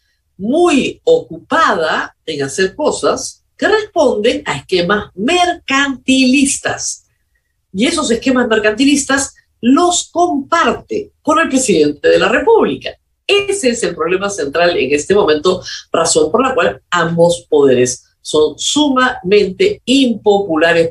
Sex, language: female, Spanish